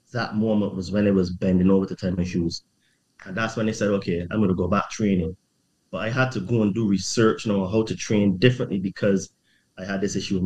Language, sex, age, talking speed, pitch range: English, male, 20-39, 260 wpm, 95-115 Hz